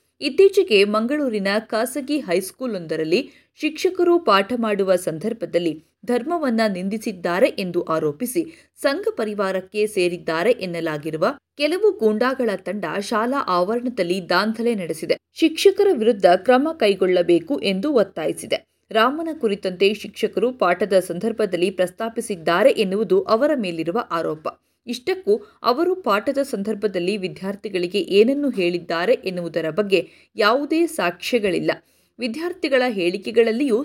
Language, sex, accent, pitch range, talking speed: Kannada, female, native, 185-270 Hz, 90 wpm